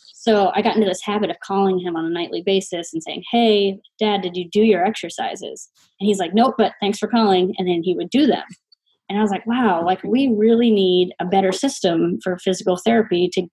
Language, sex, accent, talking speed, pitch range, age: English, female, American, 230 wpm, 180-215 Hz, 20-39